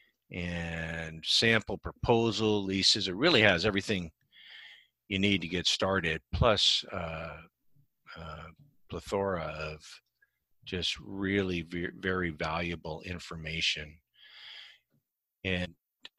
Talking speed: 95 wpm